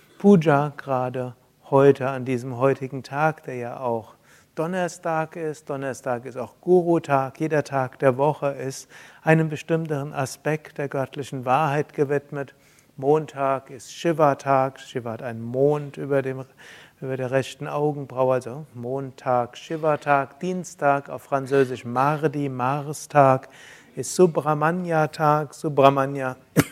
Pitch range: 130-150 Hz